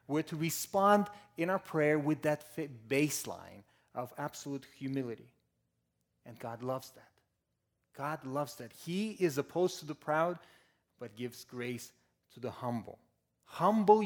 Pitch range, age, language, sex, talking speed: 110-150 Hz, 30-49, English, male, 135 wpm